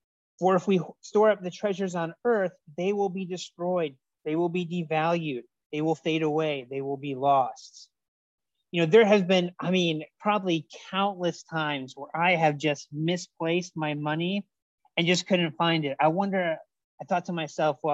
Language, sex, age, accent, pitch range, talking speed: English, male, 30-49, American, 140-180 Hz, 175 wpm